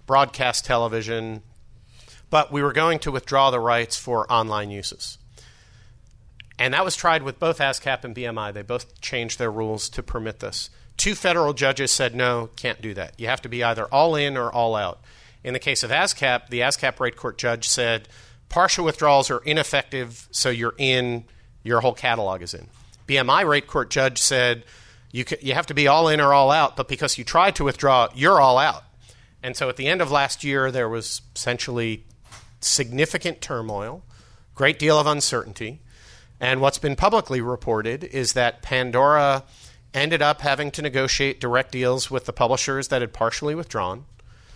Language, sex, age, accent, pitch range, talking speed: English, male, 40-59, American, 115-140 Hz, 180 wpm